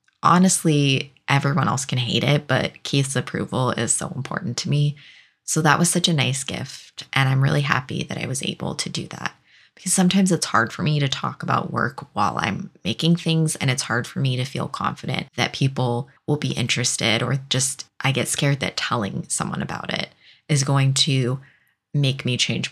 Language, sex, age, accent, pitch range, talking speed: English, female, 20-39, American, 135-170 Hz, 200 wpm